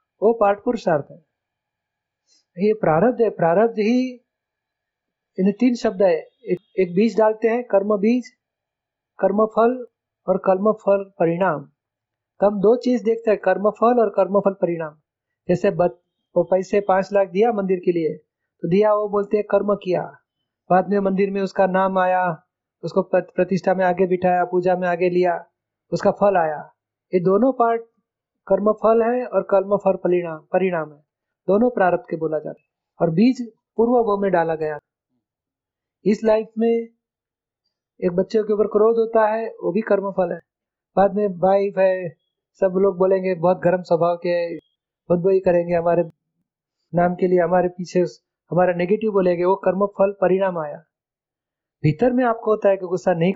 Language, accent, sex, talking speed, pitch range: Hindi, native, male, 155 wpm, 175-215 Hz